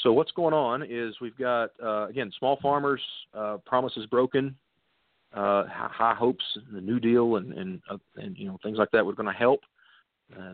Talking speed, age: 200 wpm, 40-59